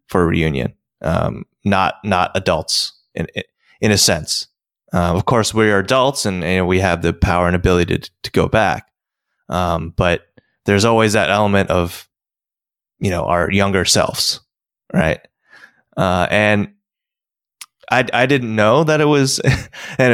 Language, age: English, 20-39